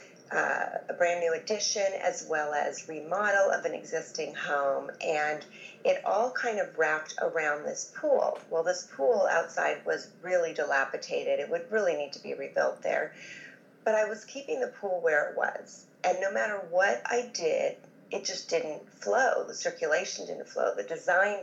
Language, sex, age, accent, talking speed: English, female, 40-59, American, 175 wpm